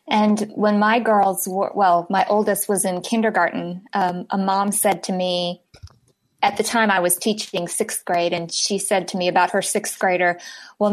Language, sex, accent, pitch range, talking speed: English, female, American, 185-220 Hz, 190 wpm